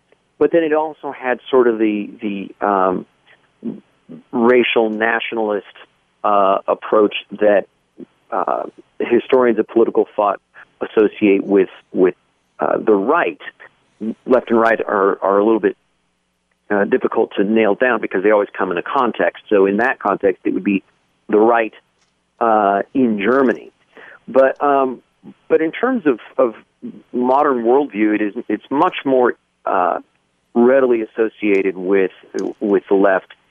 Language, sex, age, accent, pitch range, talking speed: English, male, 40-59, American, 100-135 Hz, 140 wpm